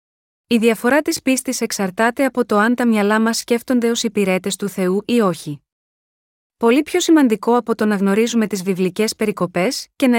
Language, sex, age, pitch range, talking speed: Greek, female, 20-39, 200-245 Hz, 175 wpm